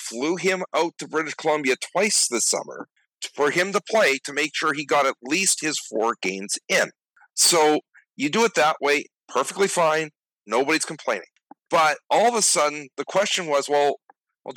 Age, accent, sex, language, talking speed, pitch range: 50-69, American, male, English, 180 wpm, 130-180 Hz